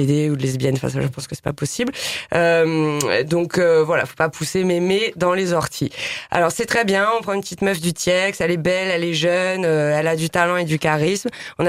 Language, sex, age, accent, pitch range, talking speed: French, female, 20-39, French, 160-190 Hz, 245 wpm